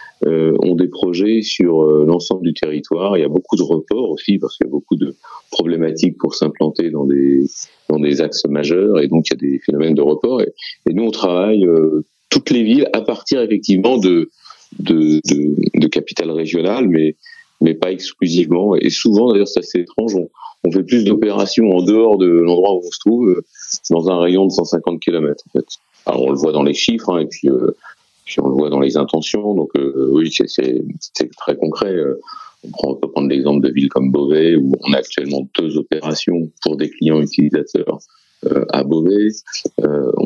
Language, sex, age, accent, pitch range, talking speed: French, male, 40-59, French, 75-105 Hz, 210 wpm